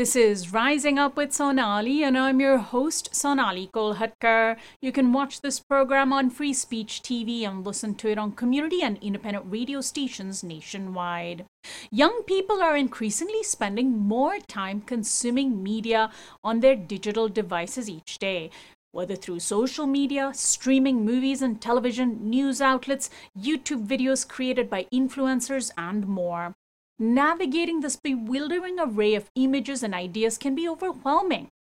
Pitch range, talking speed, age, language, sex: 205-275 Hz, 140 wpm, 30-49, English, female